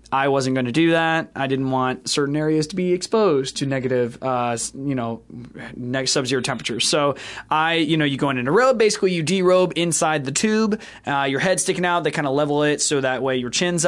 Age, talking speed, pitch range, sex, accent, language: 20-39, 225 wpm, 135-160 Hz, male, American, English